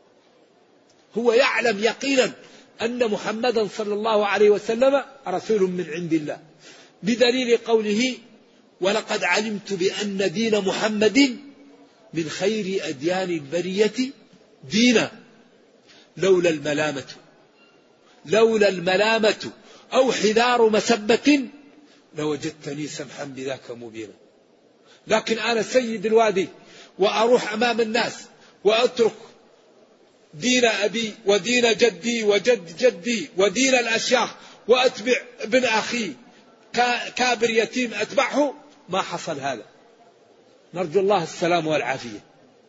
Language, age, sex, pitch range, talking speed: Arabic, 50-69, male, 190-235 Hz, 90 wpm